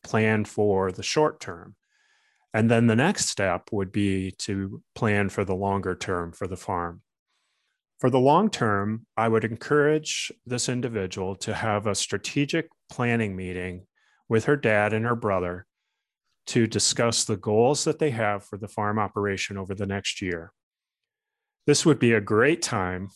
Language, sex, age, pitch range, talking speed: English, male, 30-49, 100-130 Hz, 165 wpm